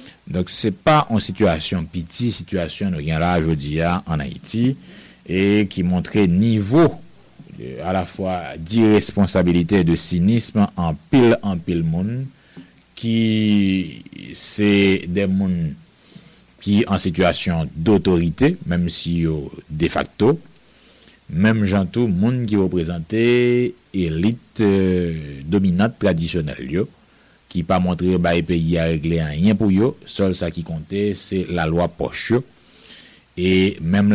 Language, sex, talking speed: English, male, 130 wpm